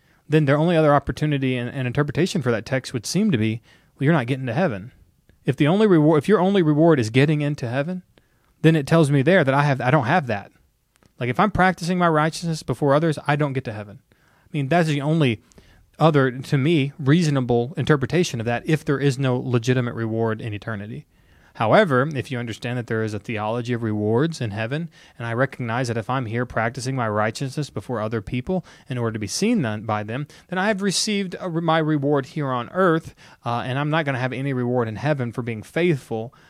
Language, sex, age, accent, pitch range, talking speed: English, male, 30-49, American, 115-155 Hz, 225 wpm